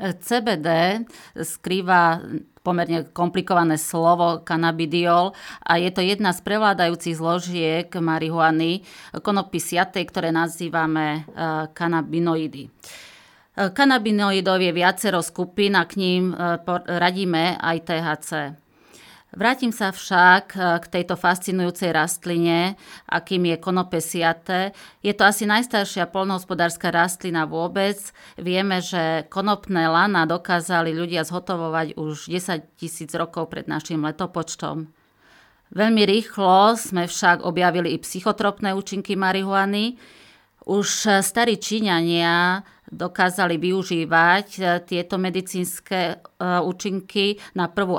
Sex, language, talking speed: female, Slovak, 100 wpm